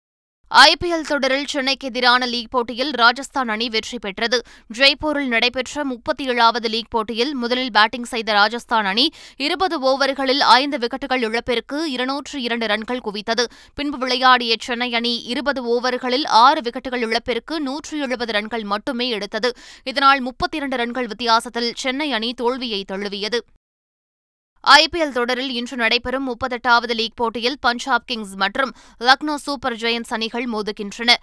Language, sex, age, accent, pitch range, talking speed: Tamil, female, 20-39, native, 235-275 Hz, 125 wpm